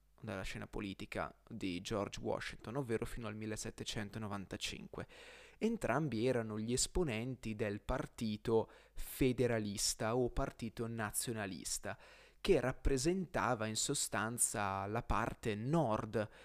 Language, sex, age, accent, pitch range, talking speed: Italian, male, 20-39, native, 105-140 Hz, 100 wpm